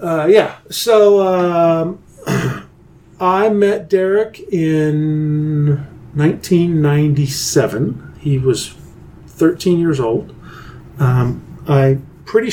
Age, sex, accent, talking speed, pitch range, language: 40-59, male, American, 80 wpm, 135-175 Hz, English